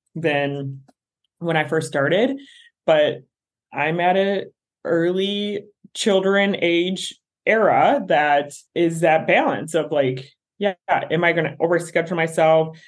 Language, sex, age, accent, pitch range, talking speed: English, male, 20-39, American, 155-195 Hz, 125 wpm